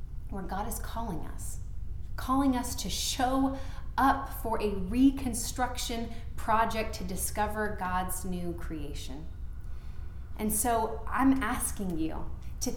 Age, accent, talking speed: 30-49, American, 115 wpm